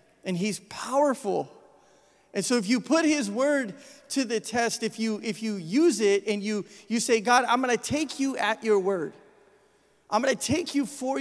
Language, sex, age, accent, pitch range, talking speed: English, male, 30-49, American, 190-240 Hz, 205 wpm